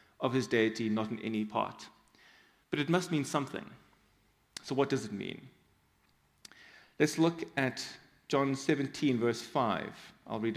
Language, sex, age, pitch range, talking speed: English, male, 30-49, 115-150 Hz, 150 wpm